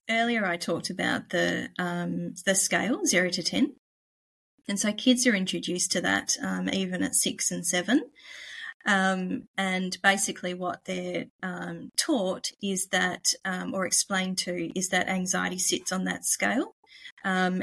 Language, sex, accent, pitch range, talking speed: English, female, Australian, 180-220 Hz, 155 wpm